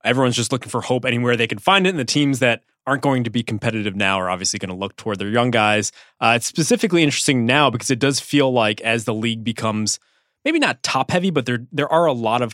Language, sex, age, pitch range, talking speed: English, male, 20-39, 105-140 Hz, 255 wpm